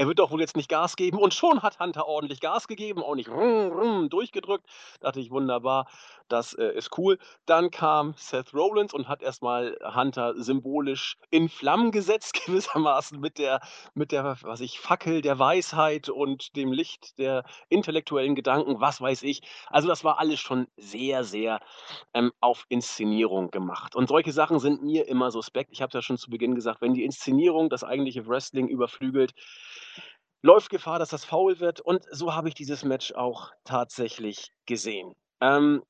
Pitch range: 130-170 Hz